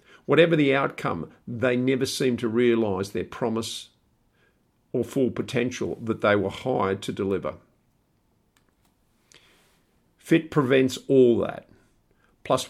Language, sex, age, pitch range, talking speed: English, male, 50-69, 115-130 Hz, 115 wpm